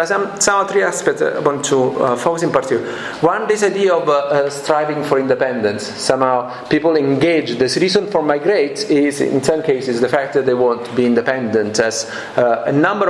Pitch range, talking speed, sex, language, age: 125-175 Hz, 200 wpm, male, English, 40-59